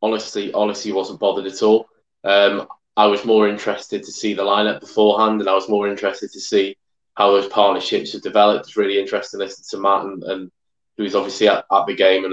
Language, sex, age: English, male, 20-39